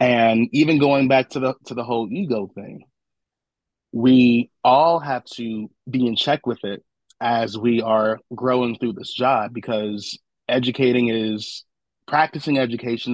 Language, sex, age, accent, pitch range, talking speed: English, male, 30-49, American, 110-130 Hz, 145 wpm